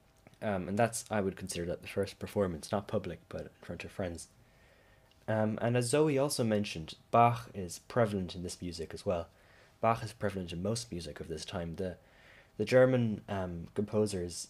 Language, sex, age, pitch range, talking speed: English, male, 10-29, 85-105 Hz, 185 wpm